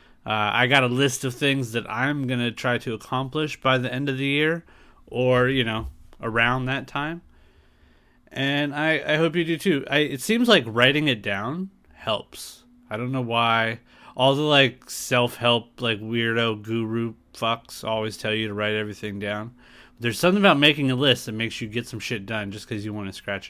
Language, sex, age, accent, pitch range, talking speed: English, male, 30-49, American, 115-150 Hz, 200 wpm